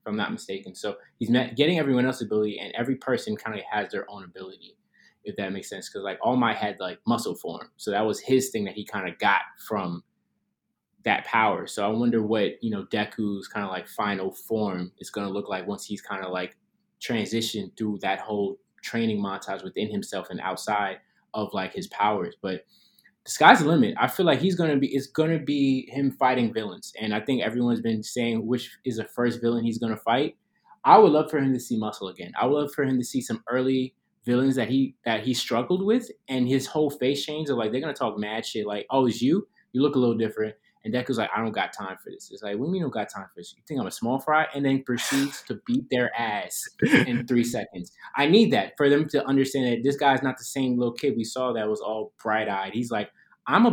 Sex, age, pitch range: male, 20-39, 110-140 Hz